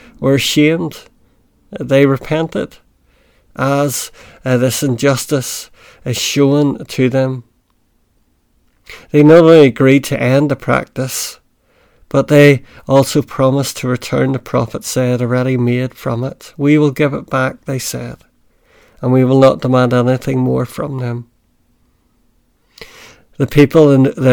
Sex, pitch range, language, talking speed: male, 125-145 Hz, English, 130 wpm